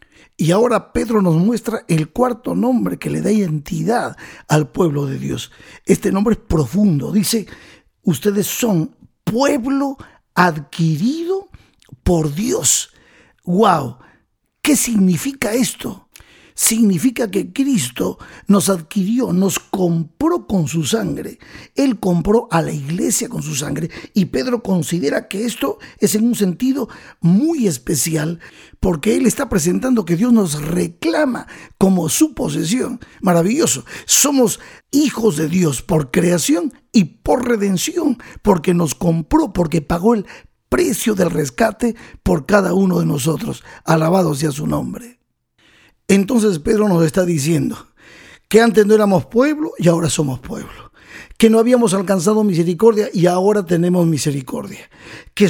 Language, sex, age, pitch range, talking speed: Spanish, male, 50-69, 170-235 Hz, 135 wpm